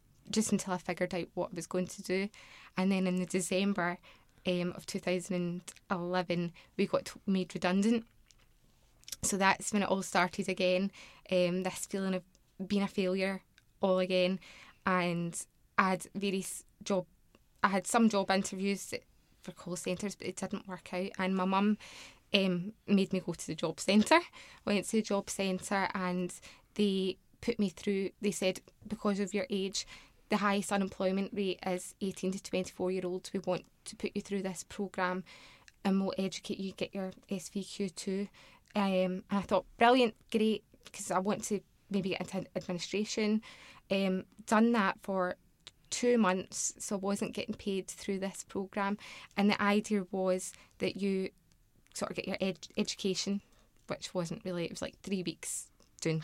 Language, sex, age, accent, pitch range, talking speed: English, female, 10-29, British, 185-200 Hz, 165 wpm